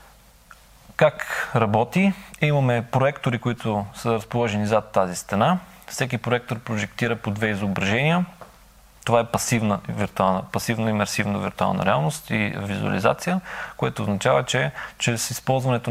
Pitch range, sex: 110-130 Hz, male